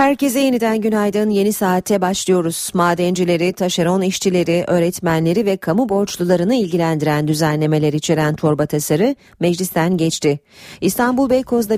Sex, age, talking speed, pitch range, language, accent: female, 40-59, 110 wpm, 155-210 Hz, Turkish, native